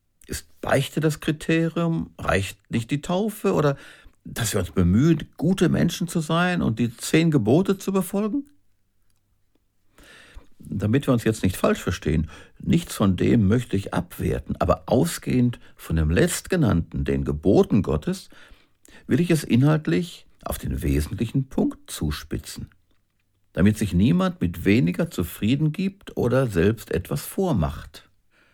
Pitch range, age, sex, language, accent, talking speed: 85-135 Hz, 60-79, male, German, German, 130 wpm